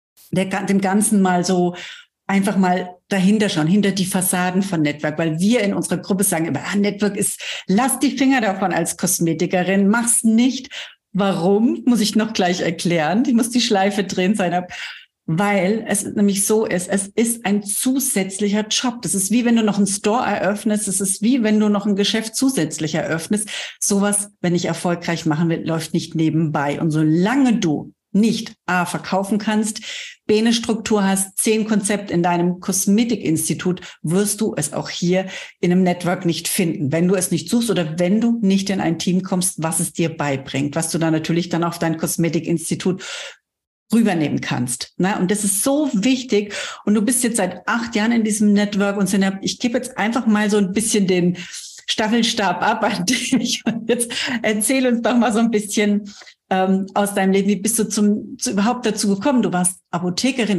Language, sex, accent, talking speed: German, female, German, 185 wpm